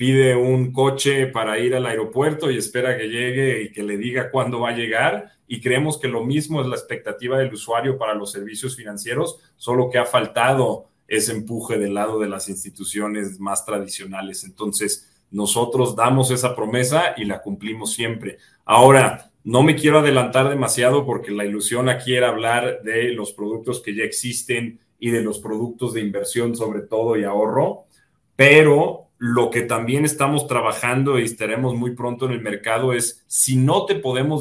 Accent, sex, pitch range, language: Mexican, male, 110-130 Hz, Spanish